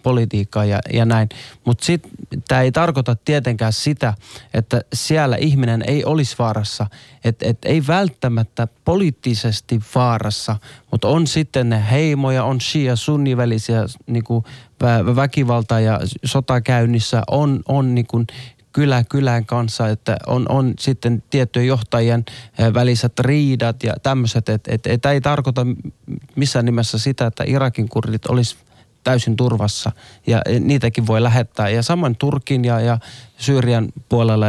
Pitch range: 115-135 Hz